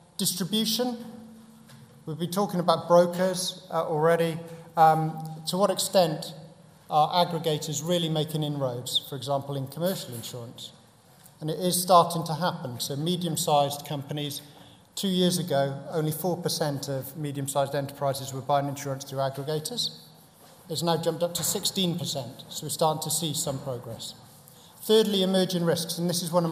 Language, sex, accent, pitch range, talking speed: English, male, British, 145-175 Hz, 145 wpm